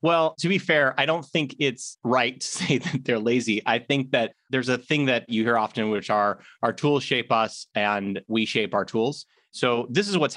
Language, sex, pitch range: English, male, 125-175 Hz